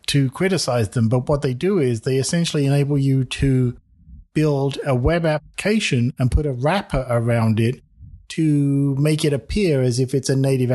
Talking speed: 180 wpm